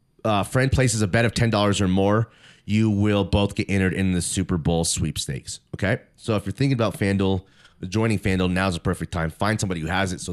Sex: male